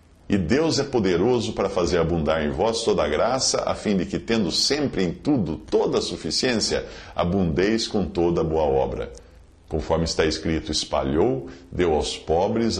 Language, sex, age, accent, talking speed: English, male, 50-69, Brazilian, 170 wpm